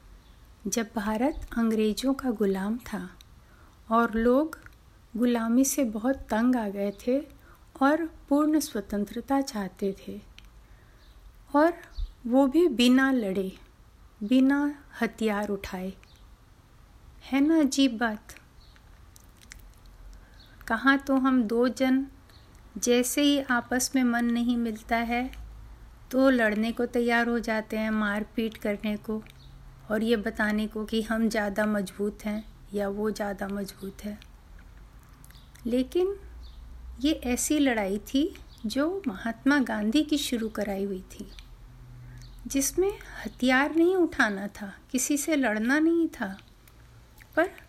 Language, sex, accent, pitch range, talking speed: Hindi, female, native, 200-265 Hz, 120 wpm